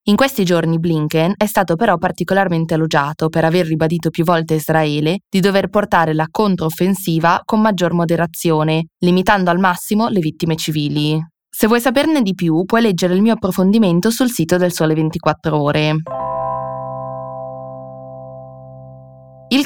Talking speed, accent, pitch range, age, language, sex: 140 wpm, native, 155-185 Hz, 20-39, Italian, female